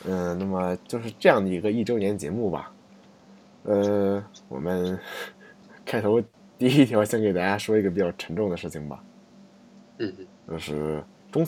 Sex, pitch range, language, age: male, 85-110 Hz, Chinese, 20-39